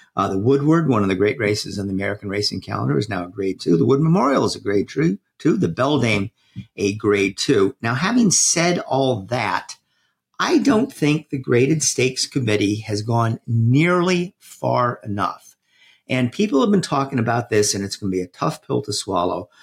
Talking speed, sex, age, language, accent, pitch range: 195 wpm, male, 50-69, English, American, 105-160 Hz